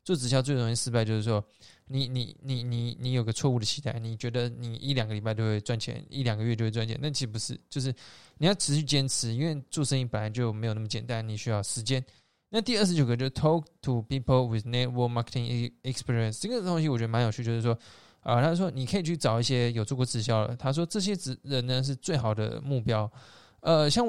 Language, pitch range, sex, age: Chinese, 115-140 Hz, male, 20-39